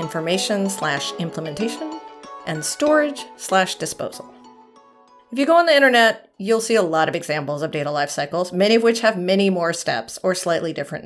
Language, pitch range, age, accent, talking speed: English, 170-220 Hz, 40-59, American, 180 wpm